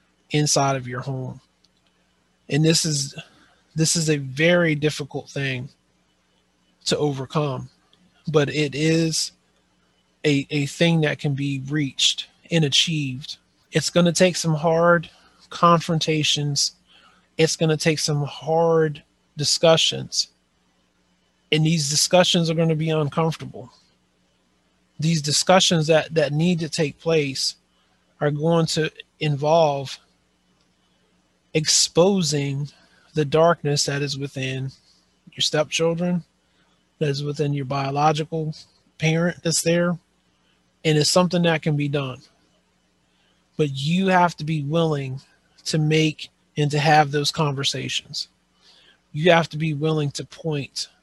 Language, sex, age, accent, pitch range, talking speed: English, male, 30-49, American, 120-160 Hz, 120 wpm